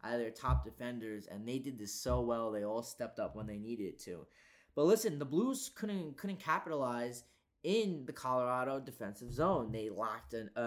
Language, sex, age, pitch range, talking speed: English, male, 20-39, 120-175 Hz, 185 wpm